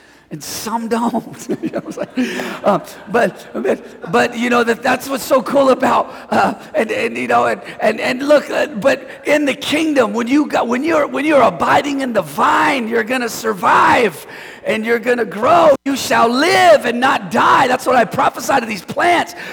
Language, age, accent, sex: English, 40-59, American, male